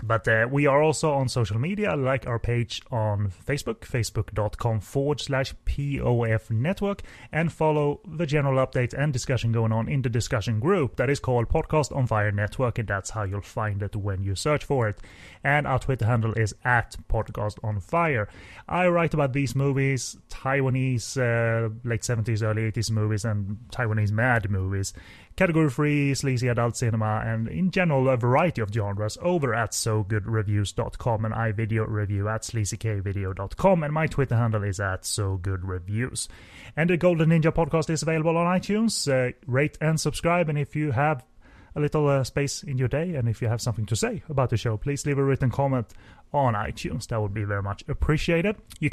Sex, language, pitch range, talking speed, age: male, English, 110-145 Hz, 185 wpm, 30-49